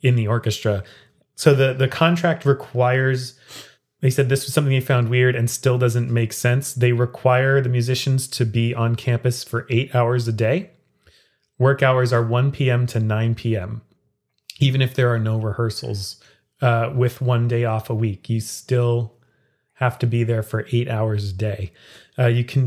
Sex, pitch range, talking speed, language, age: male, 115-135 Hz, 185 wpm, English, 30-49